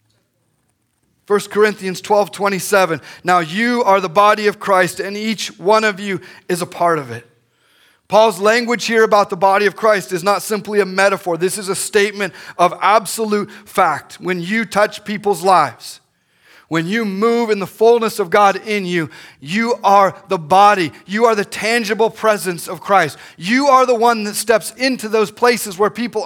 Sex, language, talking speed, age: male, English, 180 wpm, 30-49